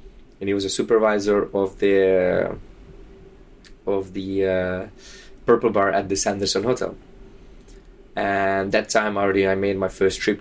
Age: 20-39